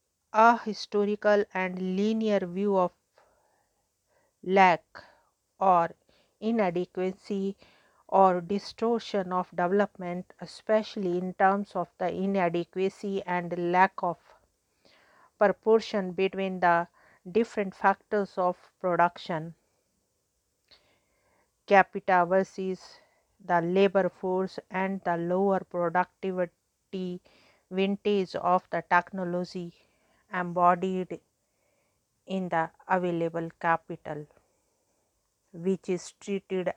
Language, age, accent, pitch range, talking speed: English, 50-69, Indian, 175-195 Hz, 80 wpm